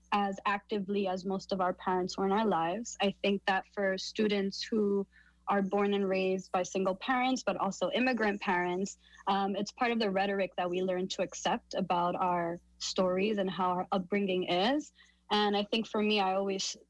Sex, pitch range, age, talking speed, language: female, 185-205 Hz, 20-39, 190 wpm, English